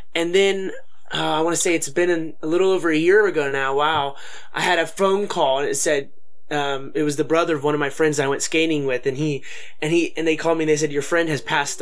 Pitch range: 150-195 Hz